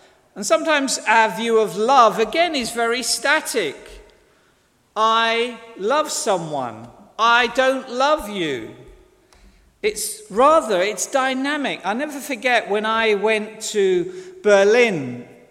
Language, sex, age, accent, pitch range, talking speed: English, male, 50-69, British, 175-240 Hz, 110 wpm